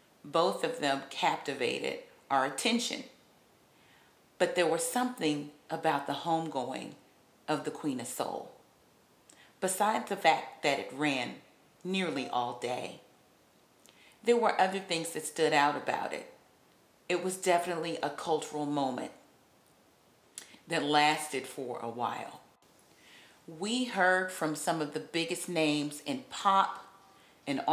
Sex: female